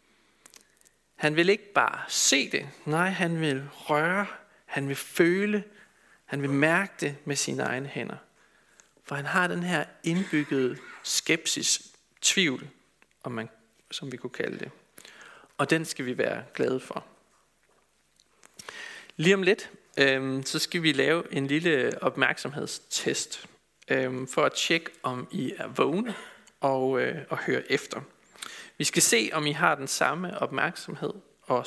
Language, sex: Danish, male